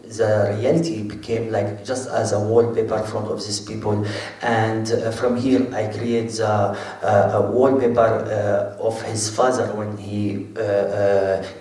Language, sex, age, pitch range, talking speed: English, male, 40-59, 110-120 Hz, 155 wpm